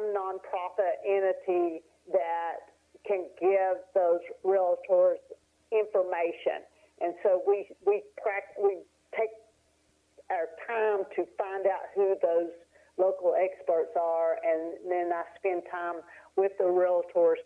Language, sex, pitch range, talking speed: English, female, 175-210 Hz, 115 wpm